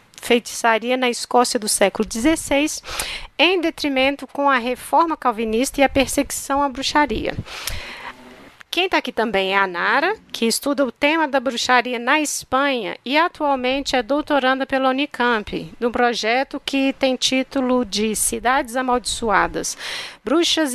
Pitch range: 230-280 Hz